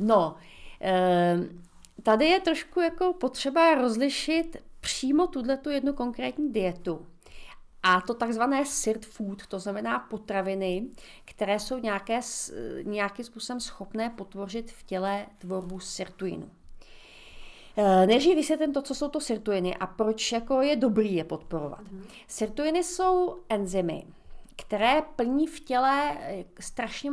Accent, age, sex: native, 40-59, female